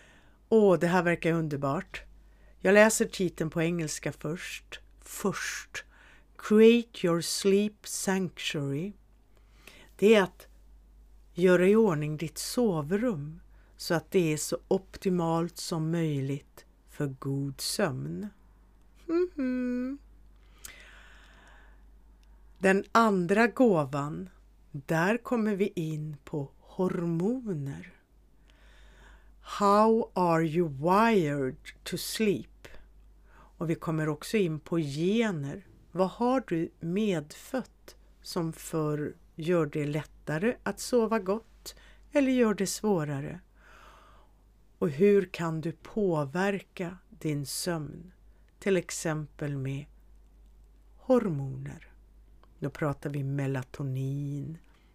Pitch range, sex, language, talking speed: 150-205 Hz, female, Swedish, 95 wpm